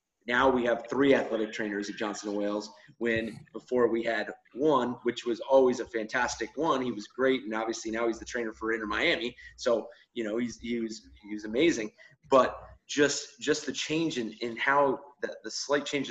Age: 30-49